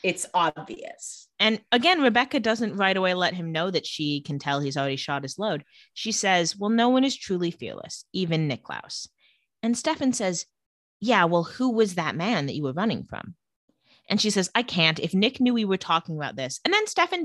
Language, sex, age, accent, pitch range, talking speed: English, female, 20-39, American, 155-215 Hz, 210 wpm